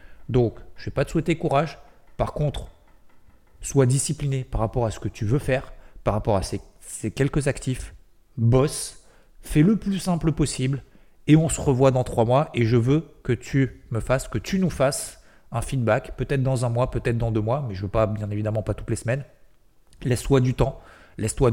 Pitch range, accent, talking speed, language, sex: 110-135 Hz, French, 210 wpm, French, male